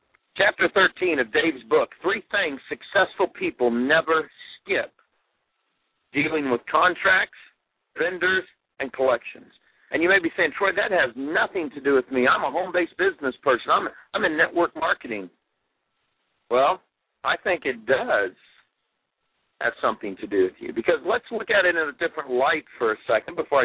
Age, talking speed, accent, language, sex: 50-69, 160 wpm, American, English, male